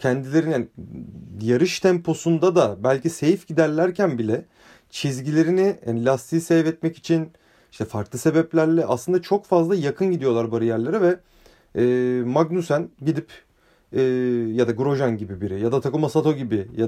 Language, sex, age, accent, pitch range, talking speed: Turkish, male, 30-49, native, 120-175 Hz, 140 wpm